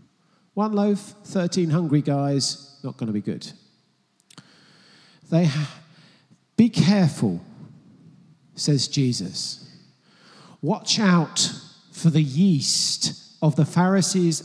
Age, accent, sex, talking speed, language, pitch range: 50-69, British, male, 95 wpm, English, 155-200 Hz